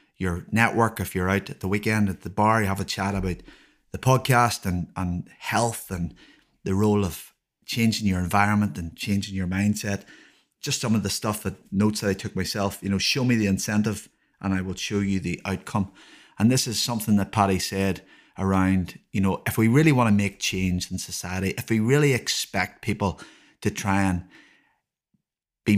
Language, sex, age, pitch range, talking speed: English, male, 30-49, 95-110 Hz, 195 wpm